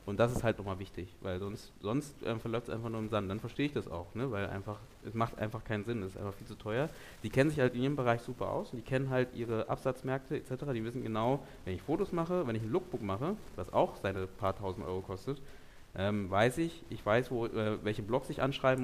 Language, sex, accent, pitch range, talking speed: German, male, German, 100-125 Hz, 260 wpm